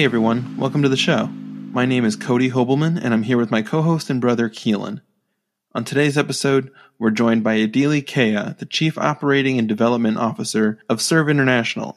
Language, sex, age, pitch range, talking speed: English, male, 20-39, 110-135 Hz, 185 wpm